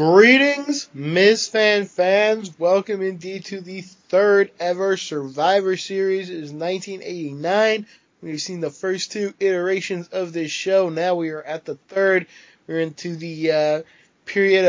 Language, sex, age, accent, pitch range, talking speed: English, male, 20-39, American, 160-195 Hz, 140 wpm